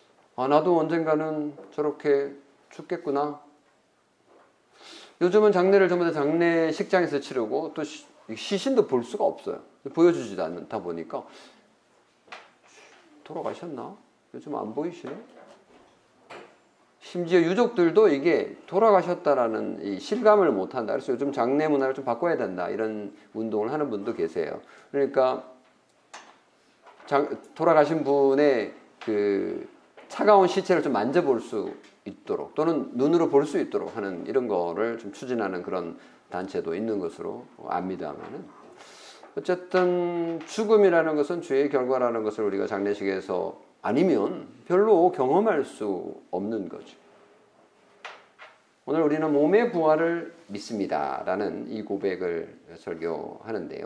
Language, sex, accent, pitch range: Korean, male, native, 140-210 Hz